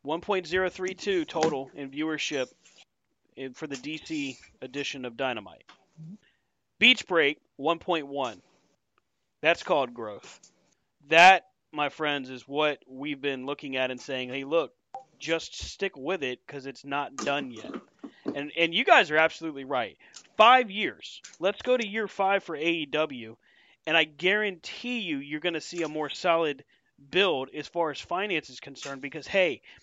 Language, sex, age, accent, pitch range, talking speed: English, male, 30-49, American, 145-195 Hz, 145 wpm